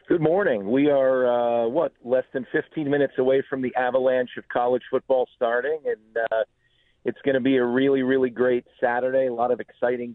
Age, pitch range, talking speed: 50-69, 120-140 Hz, 195 wpm